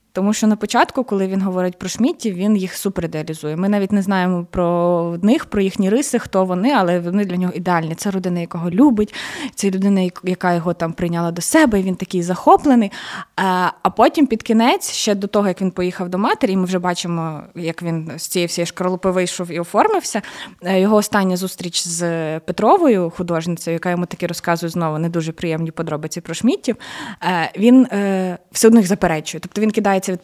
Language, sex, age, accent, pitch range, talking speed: Ukrainian, female, 20-39, native, 175-215 Hz, 185 wpm